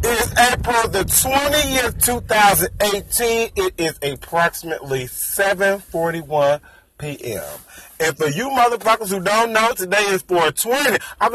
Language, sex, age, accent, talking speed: English, male, 40-59, American, 120 wpm